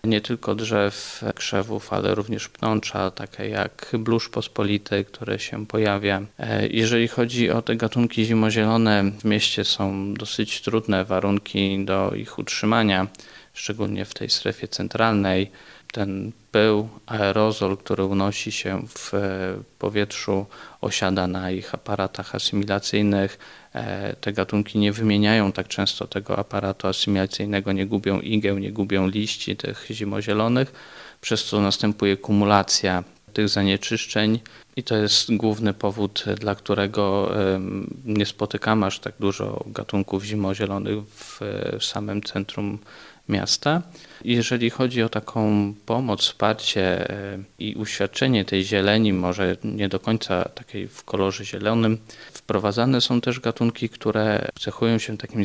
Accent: native